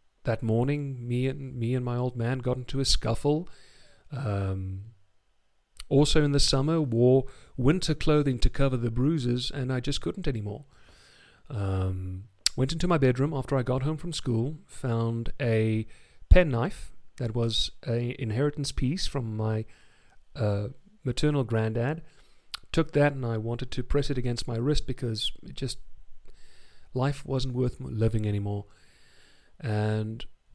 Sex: male